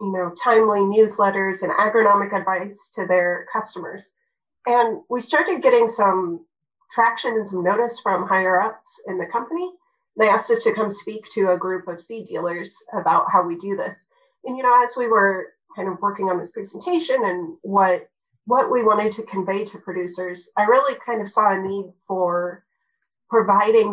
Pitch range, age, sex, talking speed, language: 195-295 Hz, 30-49, female, 185 wpm, English